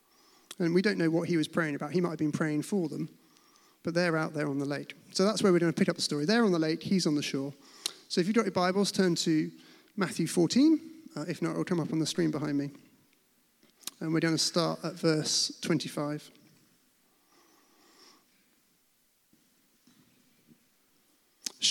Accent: British